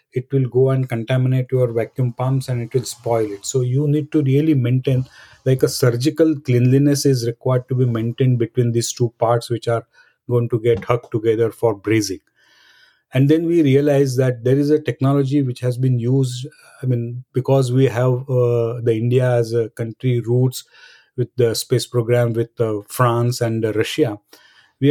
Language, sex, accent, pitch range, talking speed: English, male, Indian, 120-140 Hz, 185 wpm